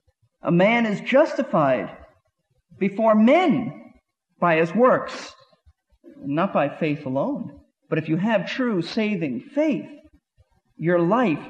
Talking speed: 115 wpm